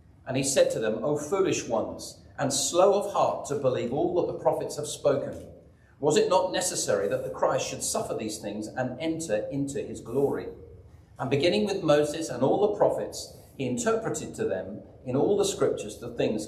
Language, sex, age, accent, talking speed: English, male, 40-59, British, 195 wpm